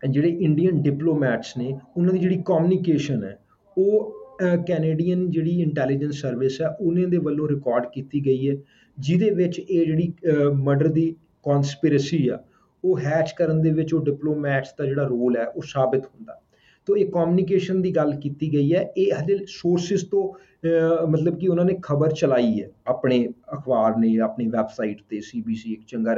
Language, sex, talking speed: English, male, 105 wpm